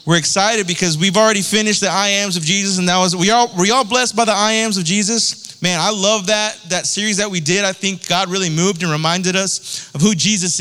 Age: 20-39